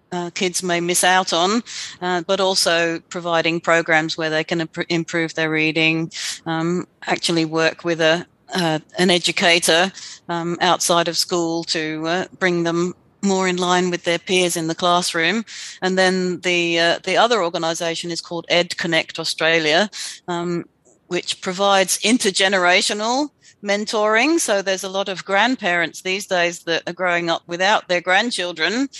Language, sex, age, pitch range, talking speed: English, female, 40-59, 170-195 Hz, 155 wpm